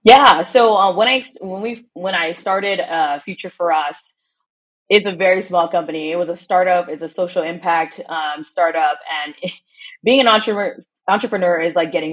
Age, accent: 20-39, American